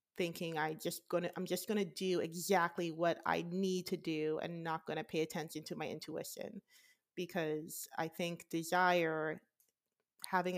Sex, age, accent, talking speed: female, 30-49, American, 155 wpm